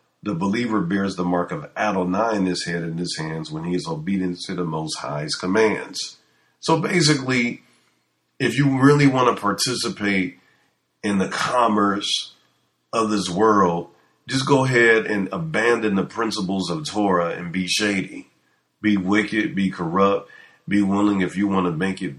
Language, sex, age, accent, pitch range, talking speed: English, male, 40-59, American, 90-105 Hz, 160 wpm